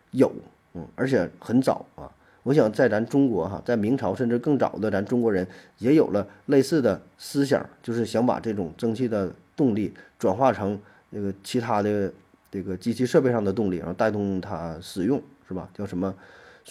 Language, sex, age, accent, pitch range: Chinese, male, 30-49, native, 95-125 Hz